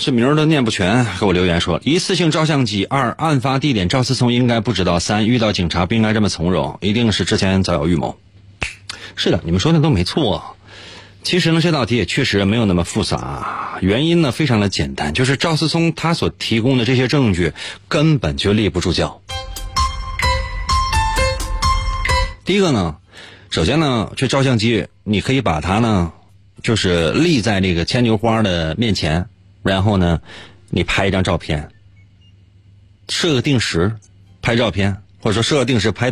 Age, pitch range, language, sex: 30-49, 90-125 Hz, Chinese, male